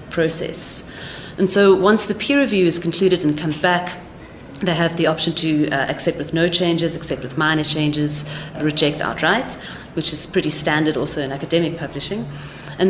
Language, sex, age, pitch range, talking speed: English, female, 30-49, 150-185 Hz, 175 wpm